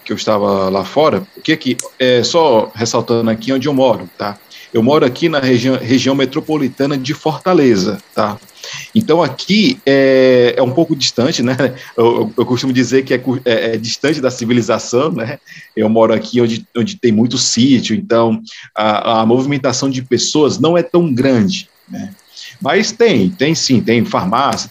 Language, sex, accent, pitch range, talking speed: Portuguese, male, Brazilian, 115-170 Hz, 170 wpm